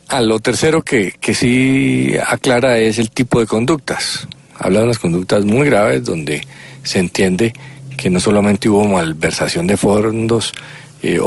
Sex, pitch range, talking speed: male, 100-125 Hz, 155 wpm